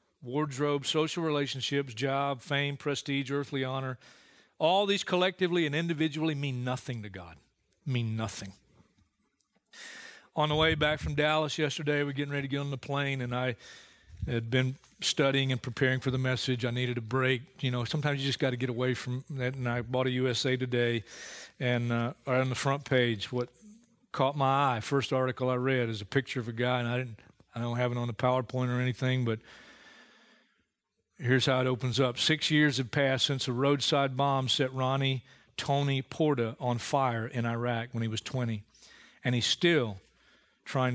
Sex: male